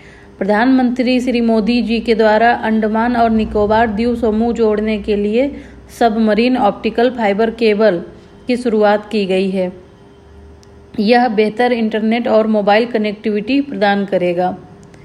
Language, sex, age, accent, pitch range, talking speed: Hindi, female, 40-59, native, 205-235 Hz, 125 wpm